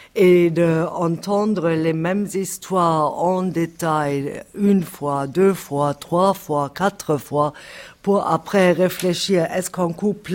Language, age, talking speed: French, 50-69, 130 wpm